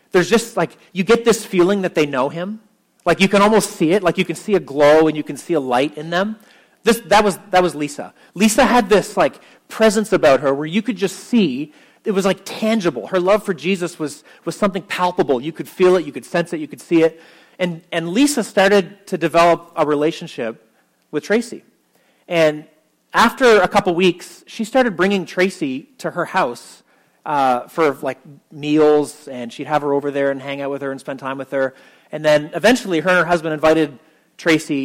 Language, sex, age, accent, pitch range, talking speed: English, male, 30-49, American, 155-200 Hz, 215 wpm